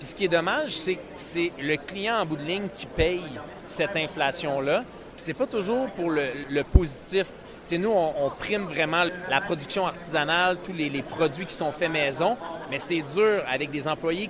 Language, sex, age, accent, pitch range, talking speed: French, male, 30-49, Canadian, 150-190 Hz, 205 wpm